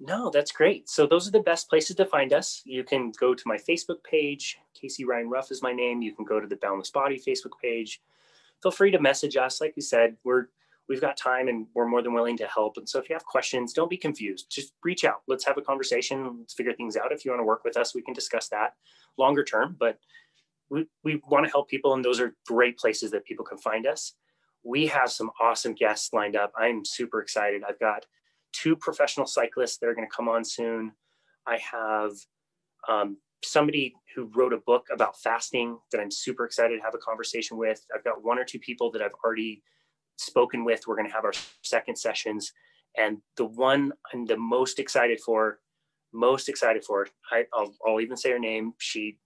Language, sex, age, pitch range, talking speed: English, male, 20-39, 115-170 Hz, 220 wpm